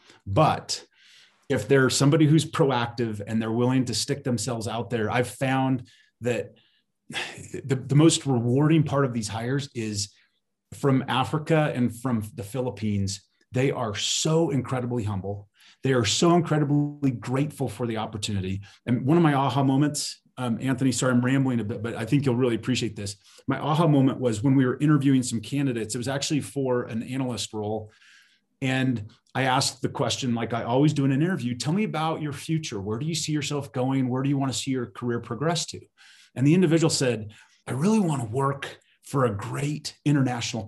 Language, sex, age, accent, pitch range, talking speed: English, male, 30-49, American, 115-140 Hz, 185 wpm